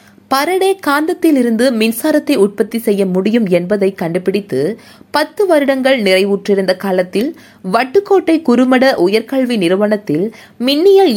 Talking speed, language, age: 90 wpm, Tamil, 20-39